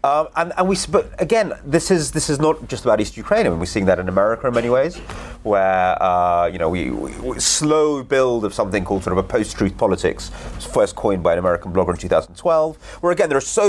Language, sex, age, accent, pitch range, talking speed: English, male, 30-49, British, 100-140 Hz, 240 wpm